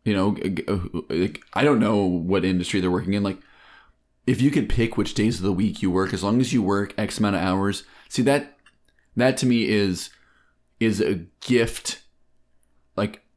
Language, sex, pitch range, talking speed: English, male, 95-115 Hz, 190 wpm